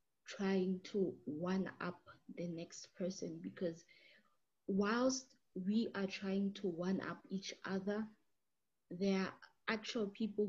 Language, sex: English, female